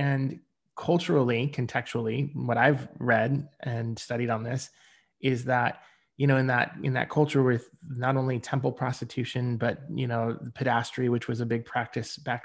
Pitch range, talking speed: 115-130 Hz, 165 wpm